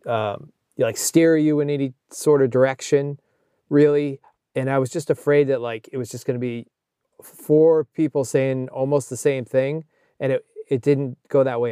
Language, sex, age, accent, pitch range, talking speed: English, male, 20-39, American, 125-155 Hz, 195 wpm